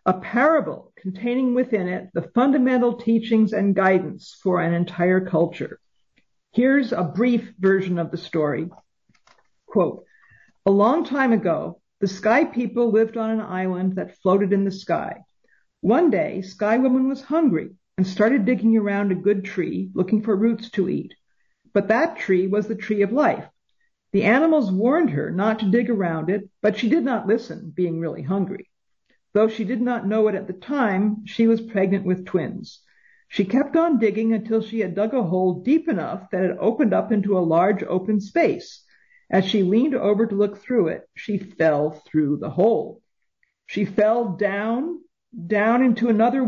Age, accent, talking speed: 50-69, American, 175 wpm